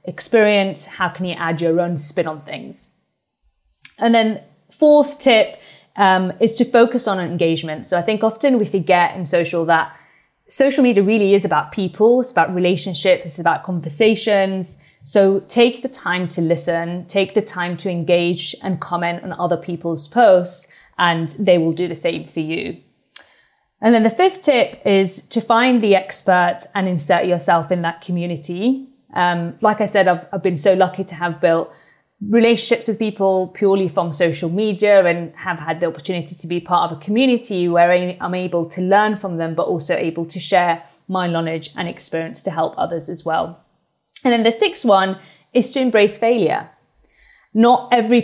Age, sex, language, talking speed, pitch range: 20-39, female, English, 180 wpm, 170-215 Hz